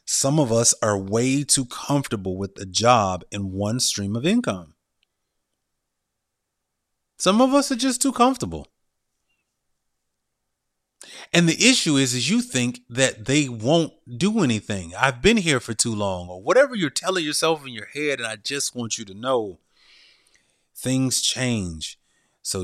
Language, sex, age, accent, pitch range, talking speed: English, male, 30-49, American, 100-140 Hz, 155 wpm